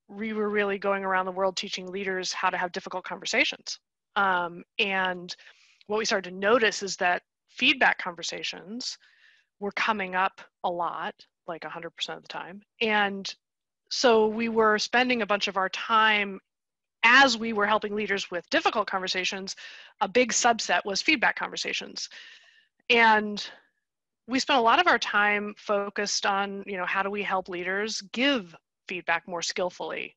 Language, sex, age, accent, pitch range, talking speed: English, female, 30-49, American, 180-220 Hz, 160 wpm